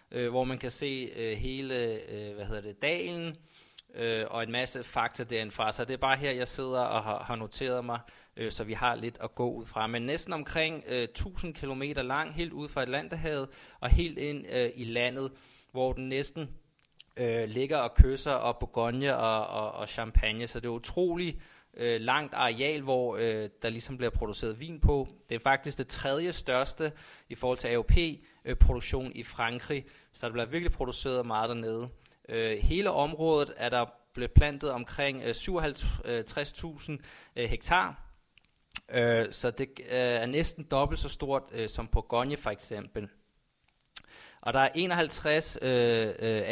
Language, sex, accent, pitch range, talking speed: Danish, male, native, 115-140 Hz, 175 wpm